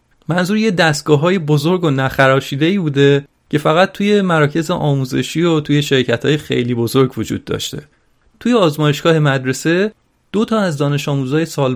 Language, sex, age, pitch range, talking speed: Persian, male, 30-49, 135-180 Hz, 140 wpm